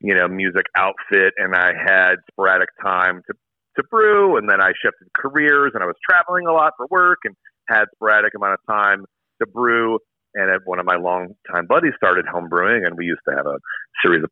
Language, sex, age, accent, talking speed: English, male, 40-59, American, 215 wpm